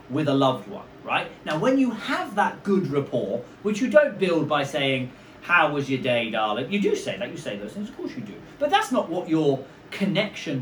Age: 30-49